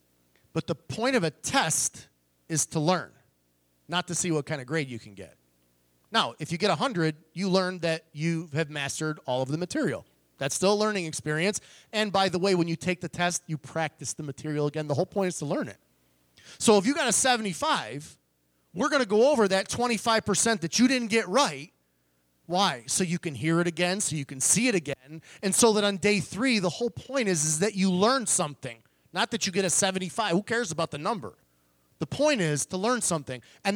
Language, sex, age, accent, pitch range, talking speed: English, male, 30-49, American, 150-225 Hz, 220 wpm